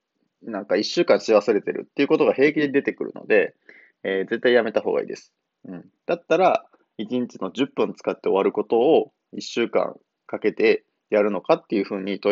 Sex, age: male, 20-39